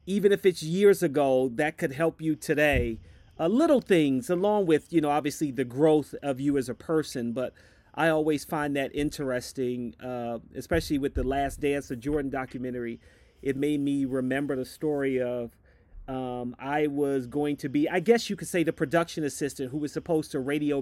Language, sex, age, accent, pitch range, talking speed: English, male, 40-59, American, 135-170 Hz, 190 wpm